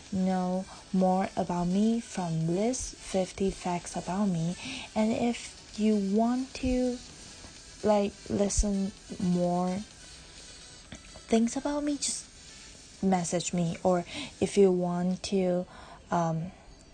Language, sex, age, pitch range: Chinese, female, 20-39, 175-210 Hz